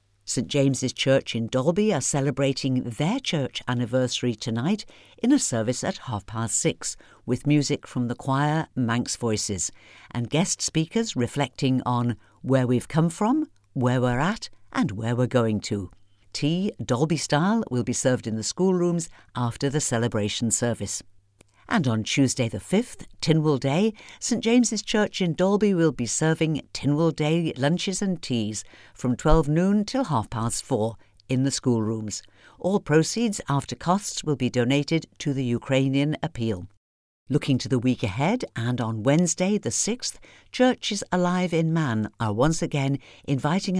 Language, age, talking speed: English, 50-69, 155 wpm